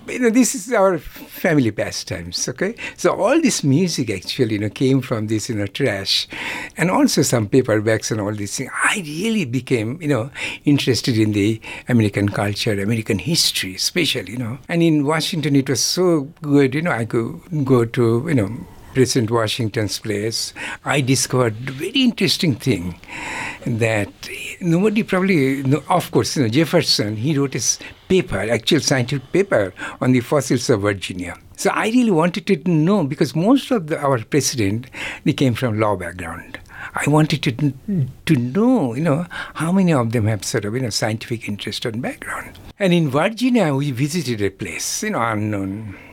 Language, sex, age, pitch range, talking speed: English, male, 60-79, 110-165 Hz, 175 wpm